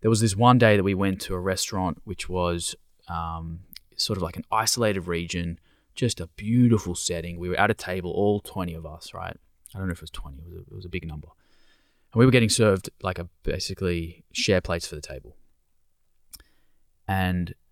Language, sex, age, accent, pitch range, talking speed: English, male, 20-39, Australian, 85-105 Hz, 205 wpm